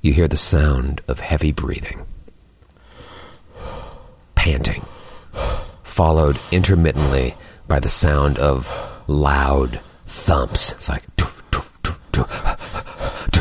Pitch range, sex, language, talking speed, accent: 80-105 Hz, male, English, 80 wpm, American